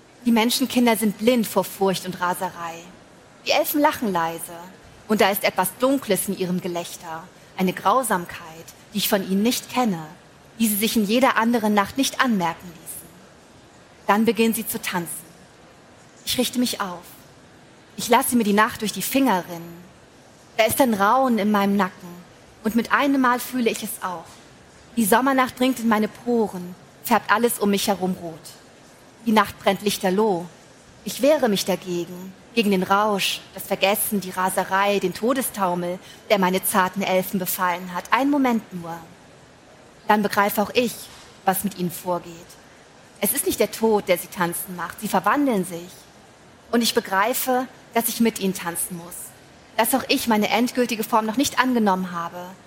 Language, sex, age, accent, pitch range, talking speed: German, female, 30-49, German, 180-230 Hz, 170 wpm